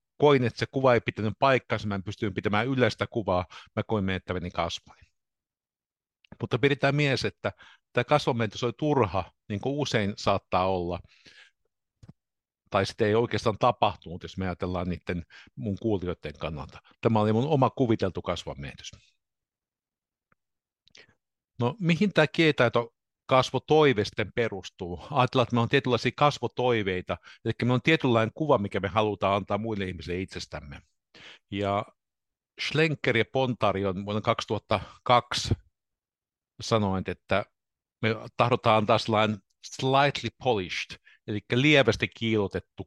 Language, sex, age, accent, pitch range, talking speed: Finnish, male, 60-79, native, 95-125 Hz, 125 wpm